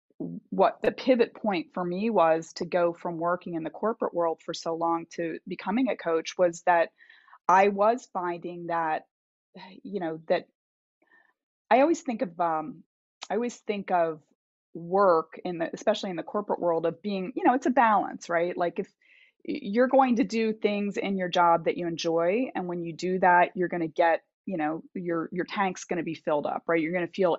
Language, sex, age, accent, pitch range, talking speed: English, female, 20-39, American, 170-230 Hz, 205 wpm